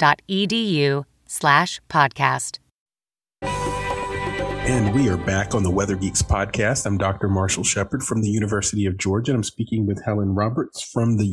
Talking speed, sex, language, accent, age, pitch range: 145 wpm, male, English, American, 40-59, 100-130 Hz